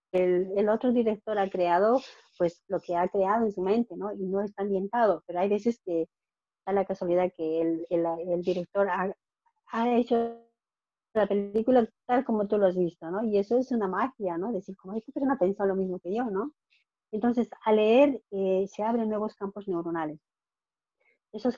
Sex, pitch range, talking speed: female, 185-220 Hz, 190 wpm